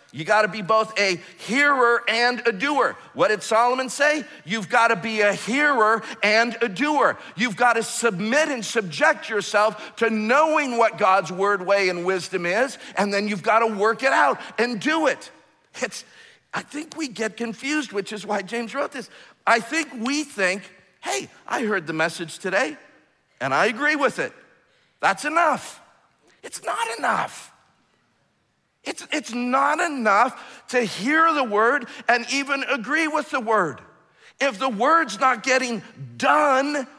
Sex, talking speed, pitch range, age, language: male, 160 wpm, 195-270 Hz, 50-69, English